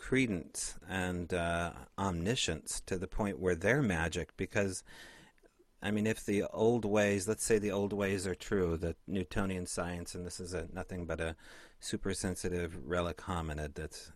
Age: 40-59